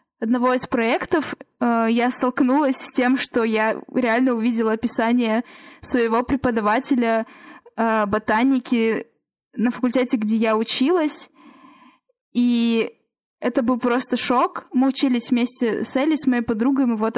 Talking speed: 120 wpm